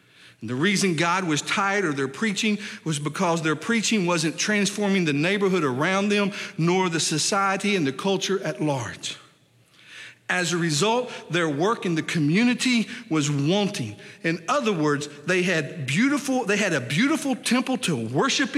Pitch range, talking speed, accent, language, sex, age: 135-195 Hz, 160 wpm, American, English, male, 50-69